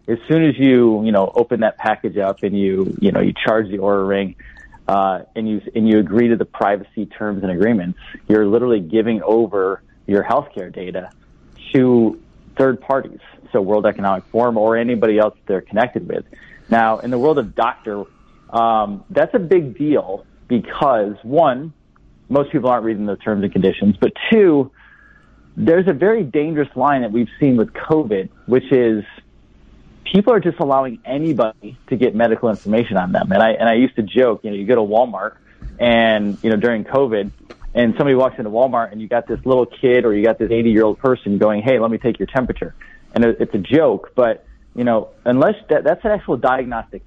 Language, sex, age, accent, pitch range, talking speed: English, male, 30-49, American, 105-130 Hz, 195 wpm